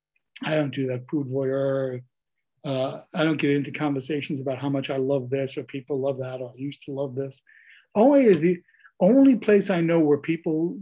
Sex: male